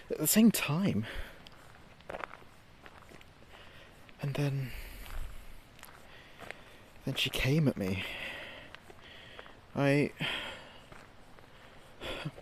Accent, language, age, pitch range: British, English, 30-49, 130-180 Hz